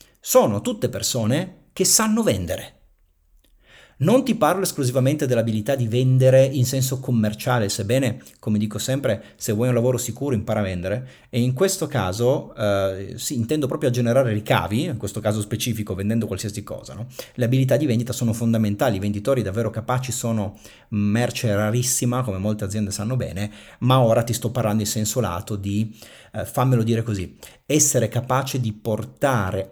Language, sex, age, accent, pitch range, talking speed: Italian, male, 40-59, native, 105-130 Hz, 165 wpm